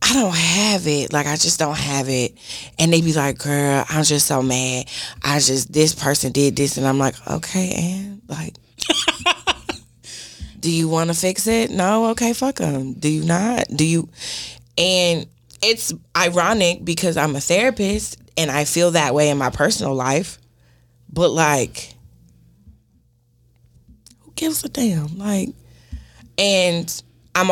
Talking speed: 155 wpm